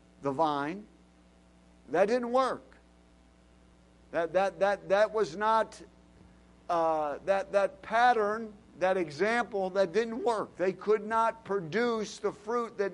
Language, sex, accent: English, male, American